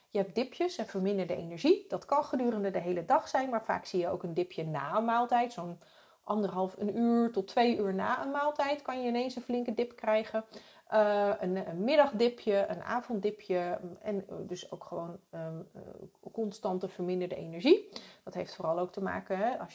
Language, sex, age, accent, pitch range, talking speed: Dutch, female, 30-49, Dutch, 185-245 Hz, 190 wpm